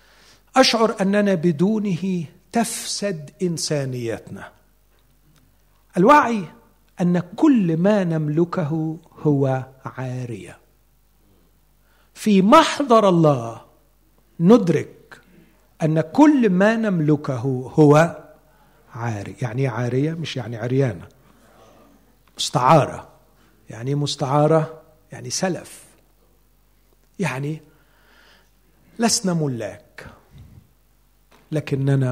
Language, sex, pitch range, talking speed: Arabic, male, 130-180 Hz, 65 wpm